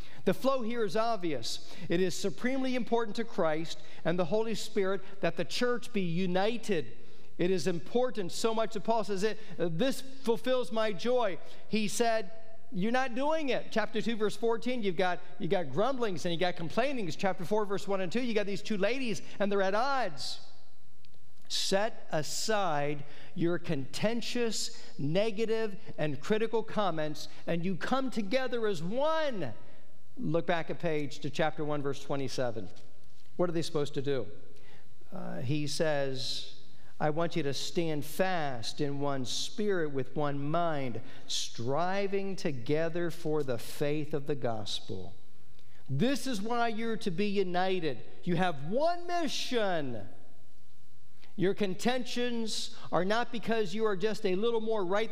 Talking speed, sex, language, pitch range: 155 wpm, male, English, 155-220 Hz